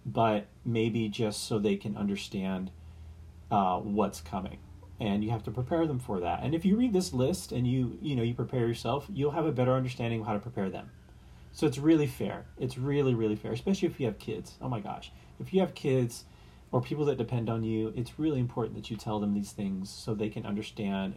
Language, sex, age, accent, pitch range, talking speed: English, male, 30-49, American, 95-125 Hz, 225 wpm